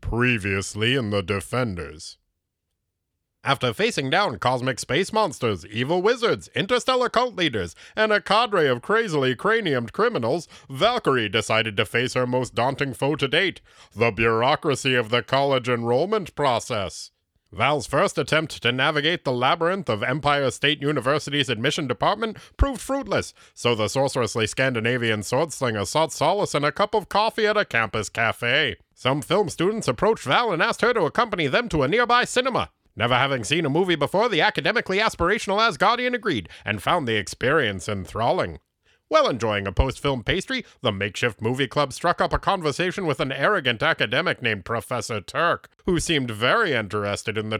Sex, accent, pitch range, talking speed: male, American, 110-180 Hz, 160 wpm